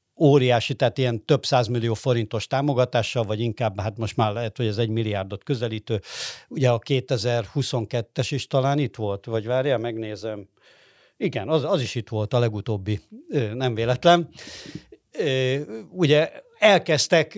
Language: Hungarian